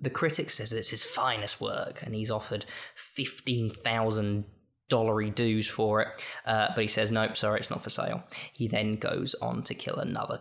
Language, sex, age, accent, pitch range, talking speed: English, male, 10-29, British, 110-135 Hz, 185 wpm